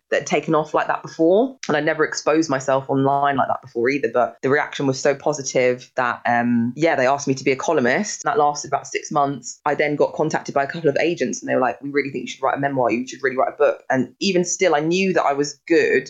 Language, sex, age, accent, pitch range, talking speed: English, female, 20-39, British, 130-170 Hz, 280 wpm